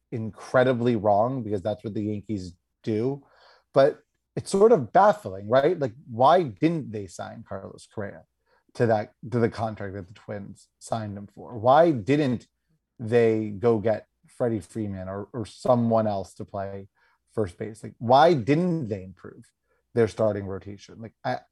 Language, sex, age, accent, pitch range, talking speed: English, male, 30-49, American, 110-150 Hz, 160 wpm